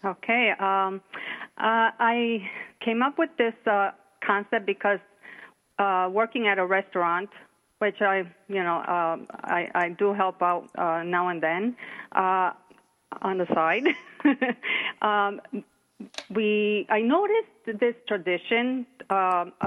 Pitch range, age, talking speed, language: 185-240 Hz, 40-59, 125 wpm, English